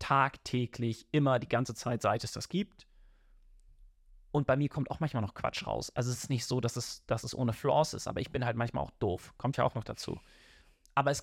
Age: 30-49